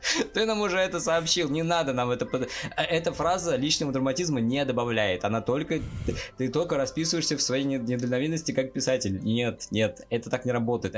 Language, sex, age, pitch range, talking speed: Russian, male, 20-39, 115-155 Hz, 180 wpm